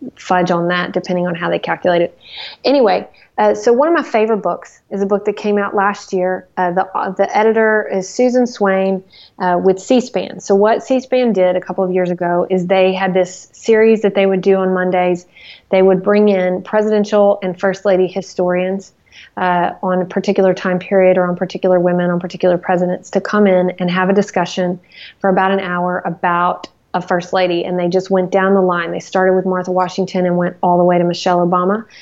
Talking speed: 210 wpm